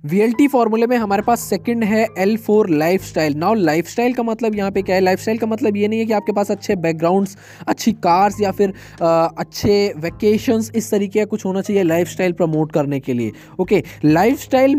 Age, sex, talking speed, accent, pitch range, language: 20-39, male, 195 wpm, native, 160-210 Hz, Hindi